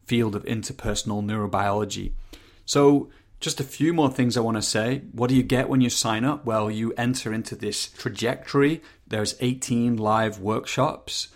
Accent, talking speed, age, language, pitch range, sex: British, 170 wpm, 30-49, English, 105-125 Hz, male